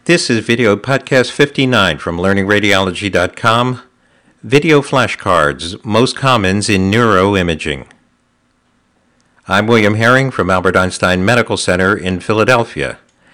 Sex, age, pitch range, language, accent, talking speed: male, 50-69, 90-115 Hz, English, American, 105 wpm